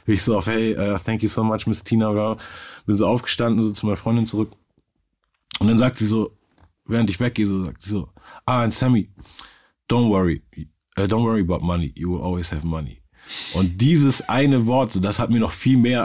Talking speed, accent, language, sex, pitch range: 205 wpm, German, German, male, 90-110 Hz